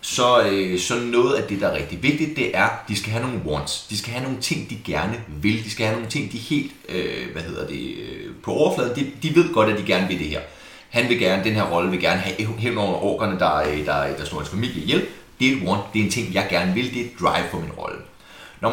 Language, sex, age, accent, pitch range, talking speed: Danish, male, 30-49, native, 95-120 Hz, 285 wpm